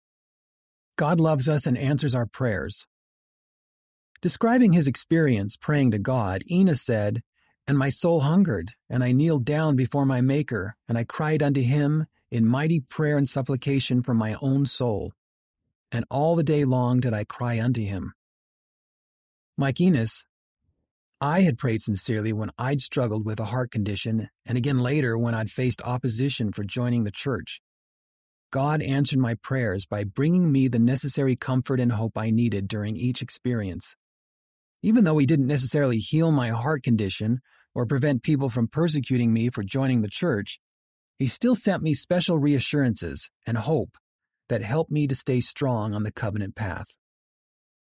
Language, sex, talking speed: English, male, 160 wpm